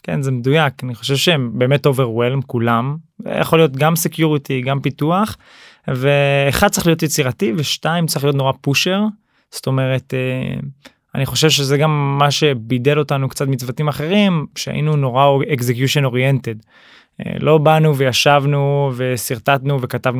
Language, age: English, 20-39